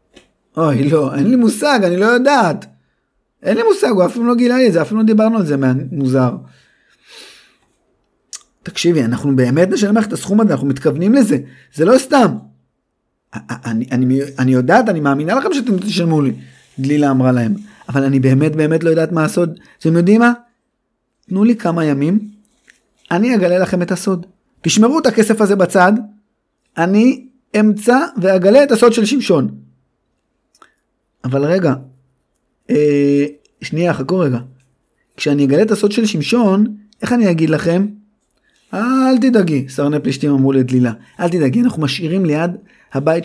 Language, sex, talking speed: Hebrew, male, 155 wpm